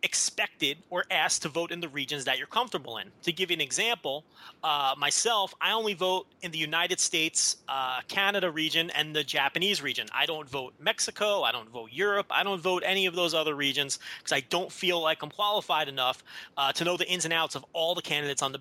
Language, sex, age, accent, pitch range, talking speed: English, male, 30-49, American, 150-195 Hz, 225 wpm